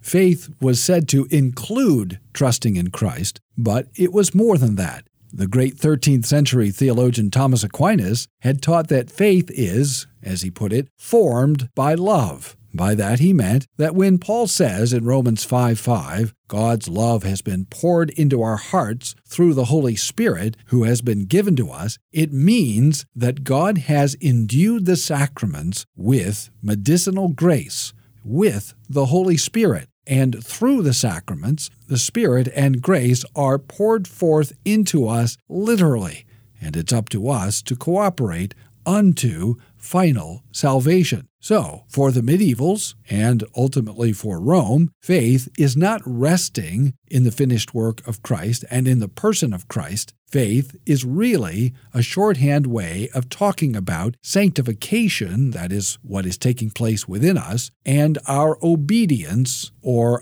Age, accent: 50-69, American